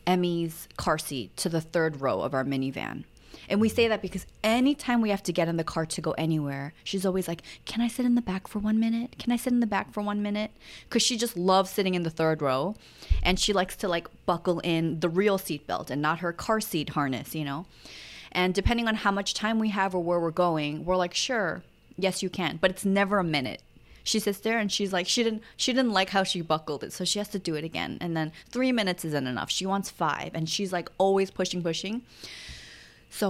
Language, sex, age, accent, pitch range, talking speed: English, female, 20-39, American, 160-200 Hz, 245 wpm